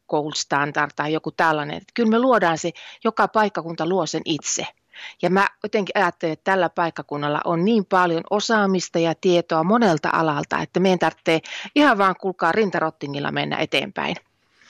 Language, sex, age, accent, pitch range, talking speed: Finnish, female, 30-49, native, 160-205 Hz, 155 wpm